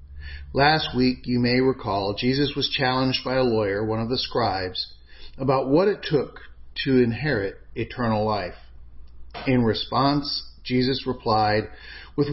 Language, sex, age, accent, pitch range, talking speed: English, male, 40-59, American, 95-135 Hz, 135 wpm